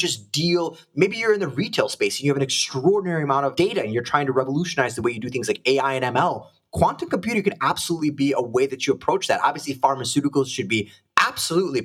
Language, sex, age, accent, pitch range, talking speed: English, male, 20-39, American, 135-185 Hz, 235 wpm